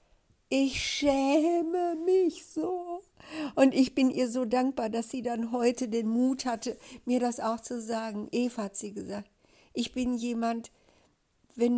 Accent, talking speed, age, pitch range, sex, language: German, 155 wpm, 60-79, 225-275 Hz, female, German